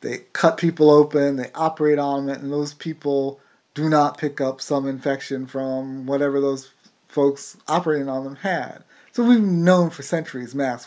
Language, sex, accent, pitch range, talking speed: English, male, American, 140-170 Hz, 170 wpm